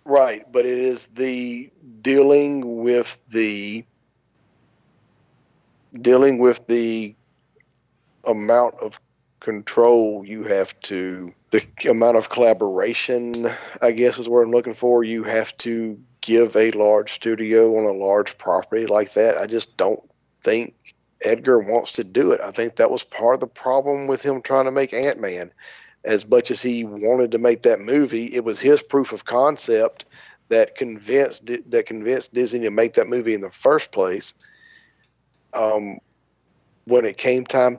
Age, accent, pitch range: 50-69, American, 115-140 Hz